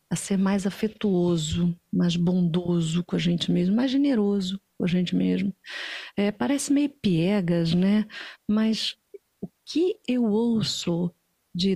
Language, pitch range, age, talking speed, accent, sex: Portuguese, 180-245 Hz, 50-69, 140 wpm, Brazilian, female